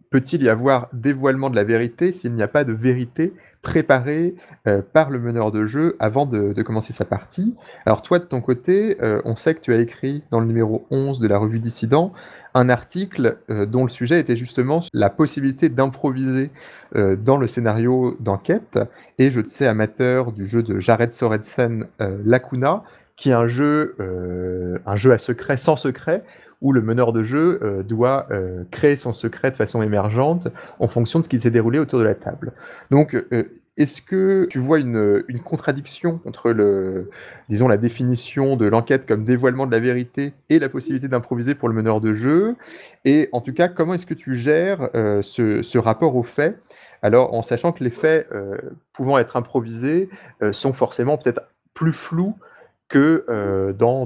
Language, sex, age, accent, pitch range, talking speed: French, male, 30-49, French, 115-145 Hz, 190 wpm